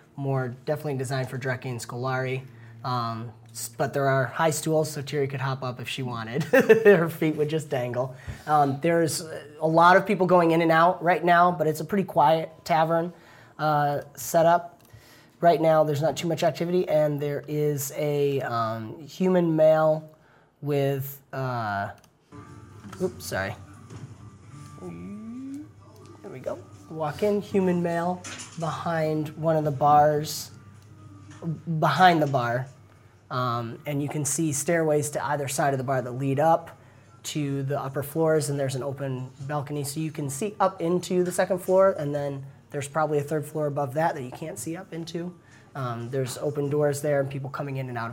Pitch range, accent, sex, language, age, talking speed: 125-160 Hz, American, male, English, 30-49, 175 wpm